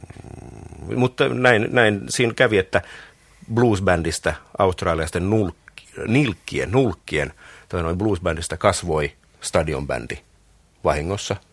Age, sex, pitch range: 50-69, male, 80-105 Hz